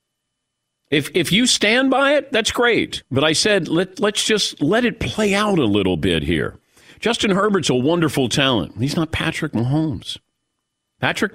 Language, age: English, 50-69